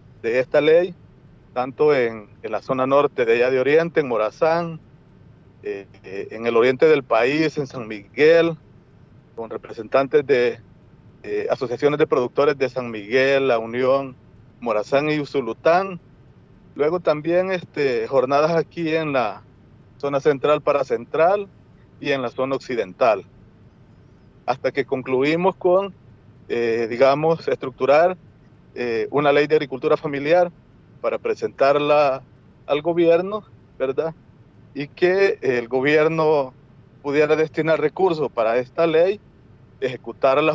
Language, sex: Spanish, male